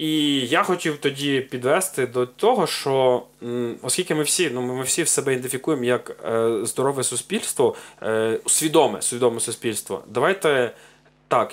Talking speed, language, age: 120 wpm, Ukrainian, 20-39